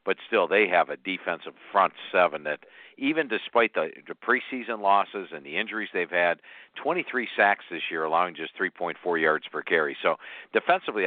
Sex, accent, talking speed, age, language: male, American, 170 wpm, 50-69, English